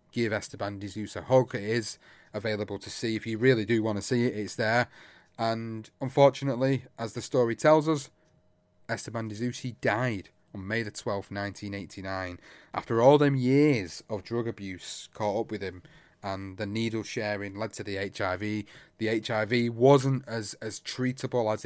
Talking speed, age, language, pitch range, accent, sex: 175 wpm, 30-49, English, 105-130 Hz, British, male